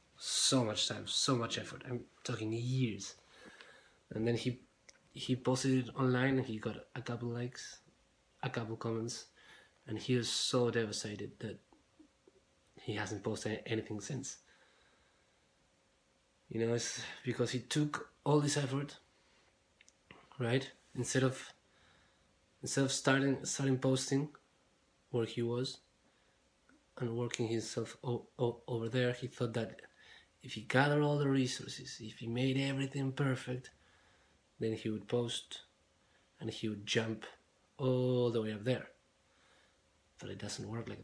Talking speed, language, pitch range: 140 wpm, English, 110-130 Hz